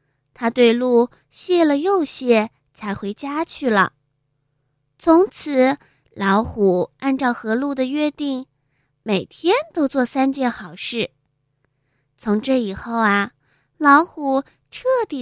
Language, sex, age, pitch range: Chinese, female, 20-39, 185-280 Hz